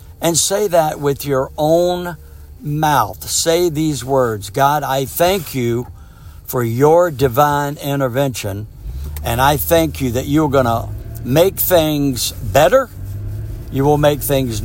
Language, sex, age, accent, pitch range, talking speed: English, male, 60-79, American, 105-140 Hz, 135 wpm